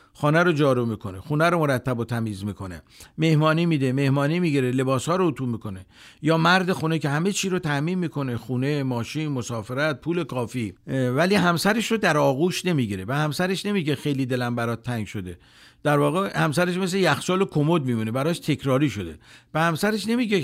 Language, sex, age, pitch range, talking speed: Persian, male, 50-69, 130-170 Hz, 180 wpm